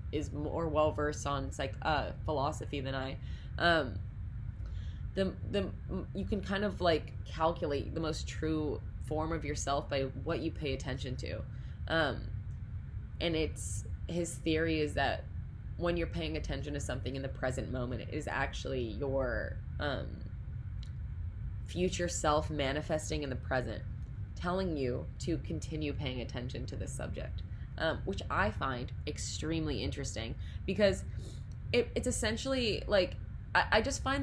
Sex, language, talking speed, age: female, English, 140 wpm, 20-39